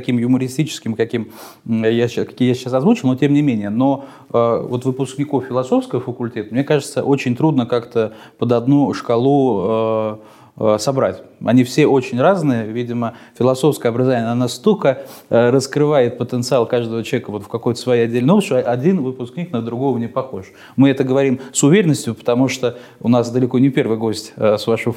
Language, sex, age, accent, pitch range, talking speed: Russian, male, 20-39, native, 115-140 Hz, 170 wpm